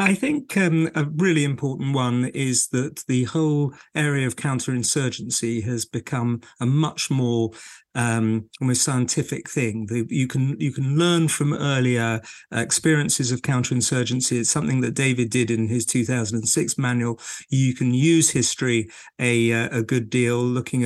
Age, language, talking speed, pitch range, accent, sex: 50-69, English, 145 wpm, 120-145 Hz, British, male